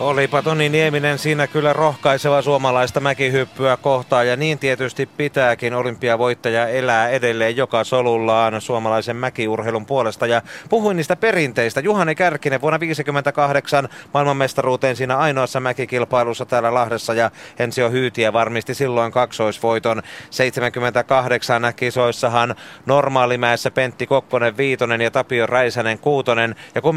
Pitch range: 110-130 Hz